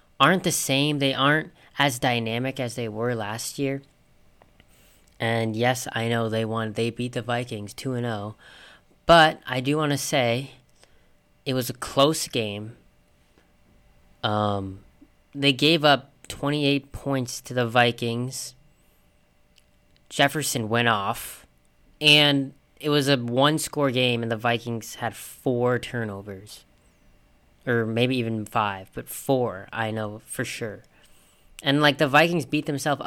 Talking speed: 135 wpm